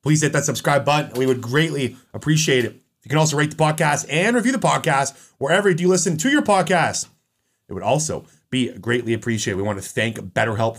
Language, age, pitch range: English, 30-49, 115-155 Hz